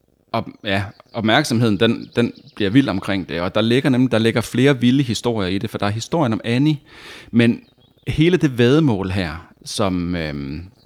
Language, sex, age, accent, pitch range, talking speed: Danish, male, 30-49, native, 95-125 Hz, 180 wpm